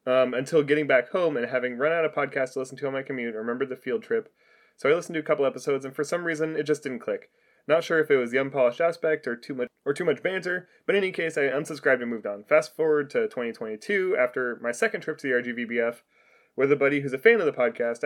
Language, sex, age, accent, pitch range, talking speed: English, male, 20-39, American, 125-155 Hz, 265 wpm